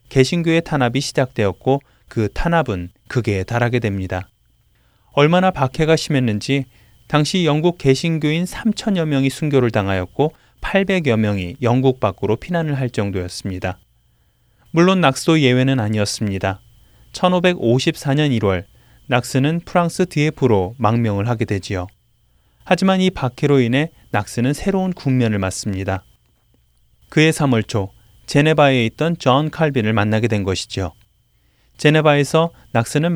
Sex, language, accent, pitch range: male, Korean, native, 110-155 Hz